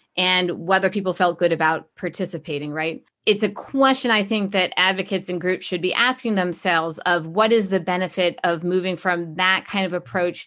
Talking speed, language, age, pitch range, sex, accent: 190 wpm, English, 30-49, 170-195 Hz, female, American